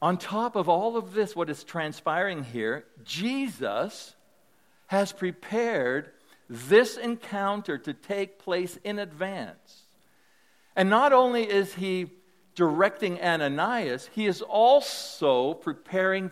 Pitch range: 155-210 Hz